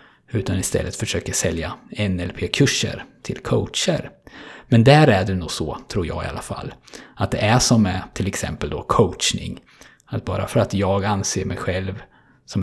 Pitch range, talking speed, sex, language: 95-115 Hz, 170 wpm, male, Swedish